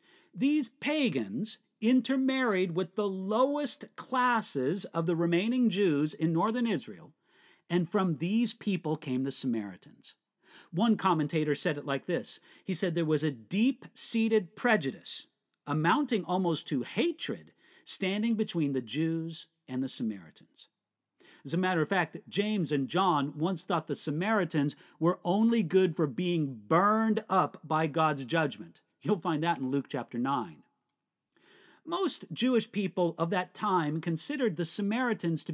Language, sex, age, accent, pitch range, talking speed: English, male, 50-69, American, 155-220 Hz, 140 wpm